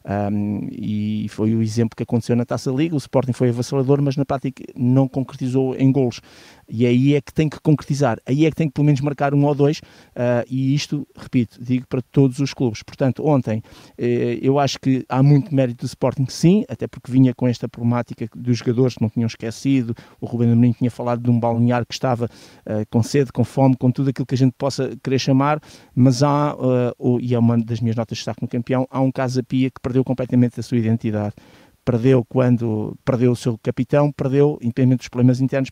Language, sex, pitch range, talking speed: Portuguese, male, 120-140 Hz, 215 wpm